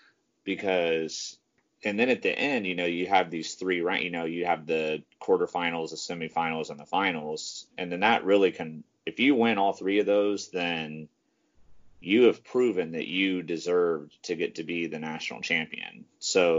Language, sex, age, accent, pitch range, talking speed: English, male, 30-49, American, 80-95 Hz, 185 wpm